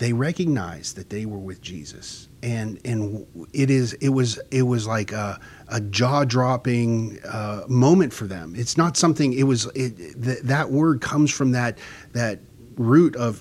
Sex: male